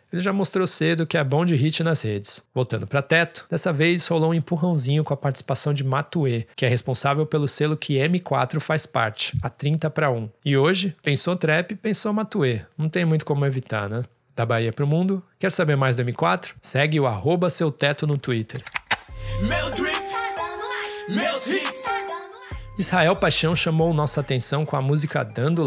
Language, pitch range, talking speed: Portuguese, 130-160 Hz, 175 wpm